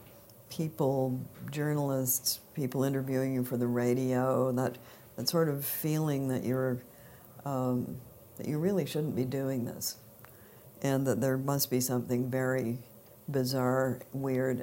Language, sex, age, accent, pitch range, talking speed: English, female, 60-79, American, 120-135 Hz, 130 wpm